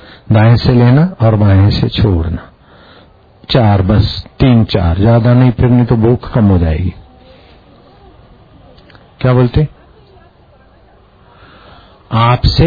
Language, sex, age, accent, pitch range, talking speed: Hindi, male, 50-69, native, 100-140 Hz, 105 wpm